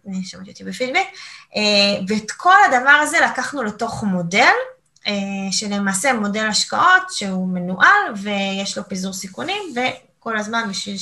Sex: female